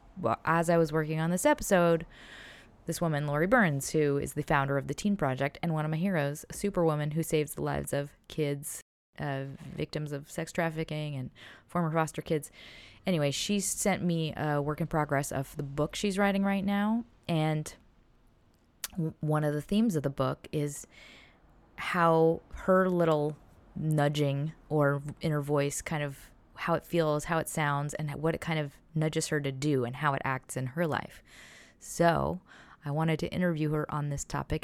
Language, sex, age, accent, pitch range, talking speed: English, female, 20-39, American, 145-185 Hz, 185 wpm